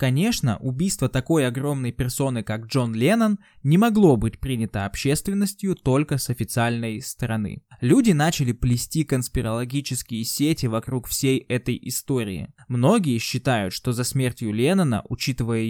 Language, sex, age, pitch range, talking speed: Russian, male, 20-39, 120-160 Hz, 125 wpm